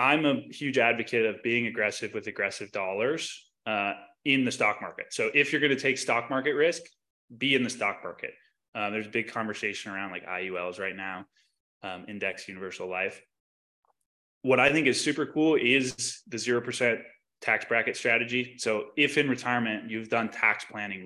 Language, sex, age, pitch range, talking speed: English, male, 20-39, 105-135 Hz, 180 wpm